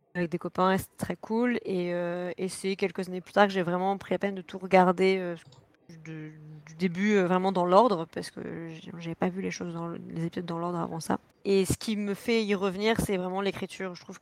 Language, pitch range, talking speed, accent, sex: French, 175-195 Hz, 245 wpm, French, female